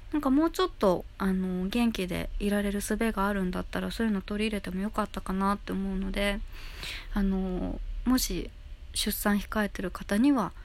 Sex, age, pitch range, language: female, 20-39, 180-215 Hz, Japanese